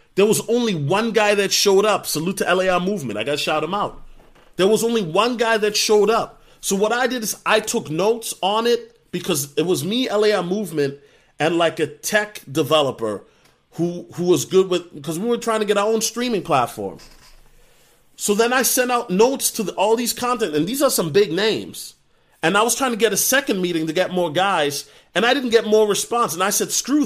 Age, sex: 30-49, male